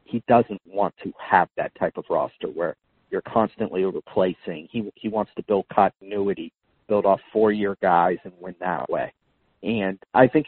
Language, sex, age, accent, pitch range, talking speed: English, male, 40-59, American, 100-120 Hz, 170 wpm